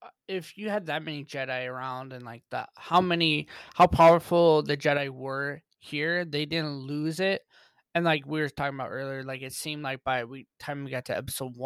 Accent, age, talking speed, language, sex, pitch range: American, 20-39, 205 wpm, English, male, 130-160 Hz